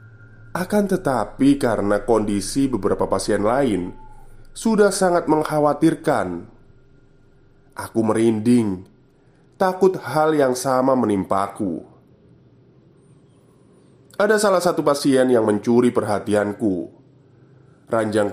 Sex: male